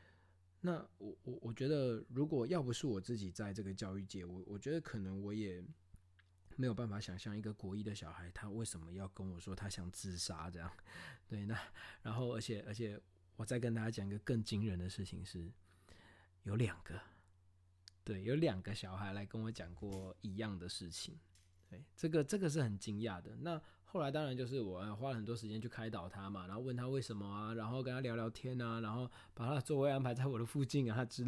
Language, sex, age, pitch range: Chinese, male, 20-39, 90-120 Hz